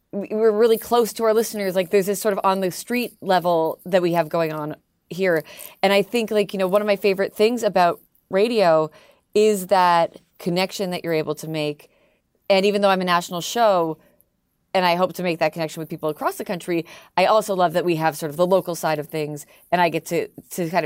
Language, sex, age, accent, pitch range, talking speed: English, female, 30-49, American, 160-195 Hz, 230 wpm